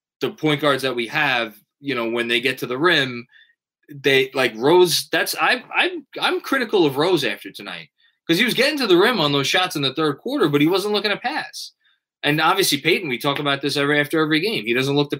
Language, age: English, 20-39